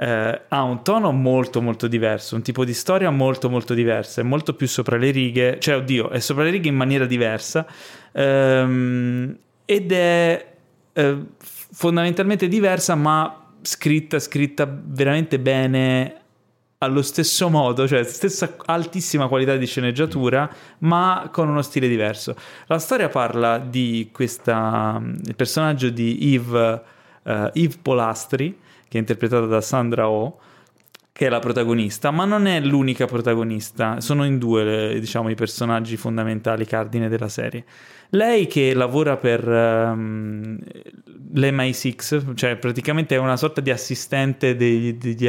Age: 30-49